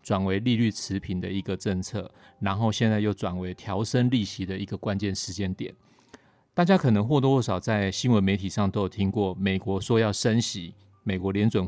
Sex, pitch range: male, 95-115 Hz